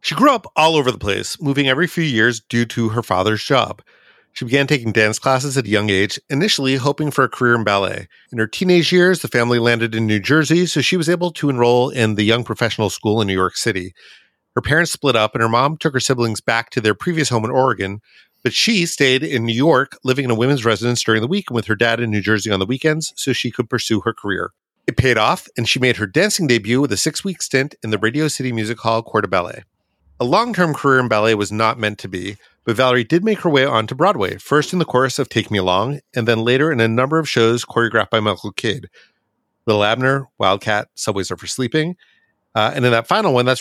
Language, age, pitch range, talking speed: English, 40-59, 110-140 Hz, 245 wpm